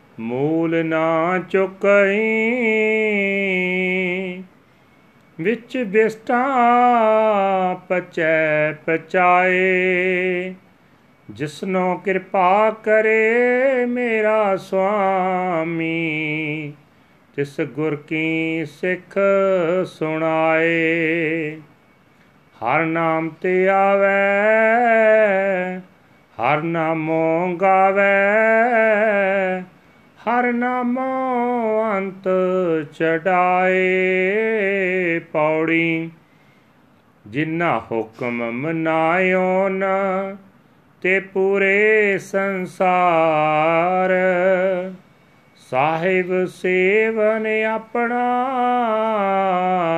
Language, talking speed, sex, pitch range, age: Punjabi, 45 wpm, male, 165-200 Hz, 40-59